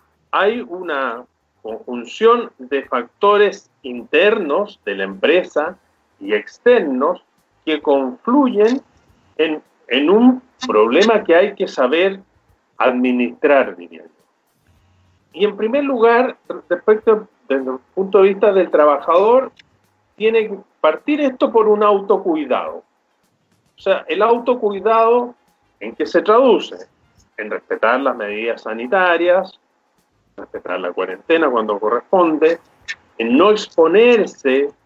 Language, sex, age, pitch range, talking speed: Spanish, male, 40-59, 135-215 Hz, 110 wpm